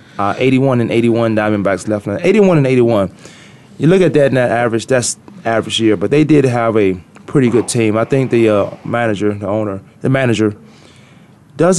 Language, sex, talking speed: English, male, 195 wpm